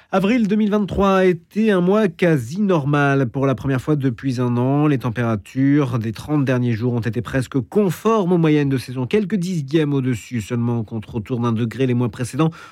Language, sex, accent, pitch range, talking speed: French, male, French, 120-165 Hz, 190 wpm